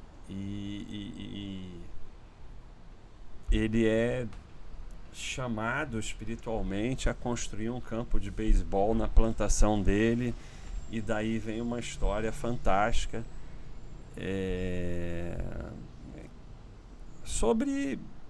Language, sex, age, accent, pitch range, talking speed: Portuguese, male, 40-59, Brazilian, 90-115 Hz, 75 wpm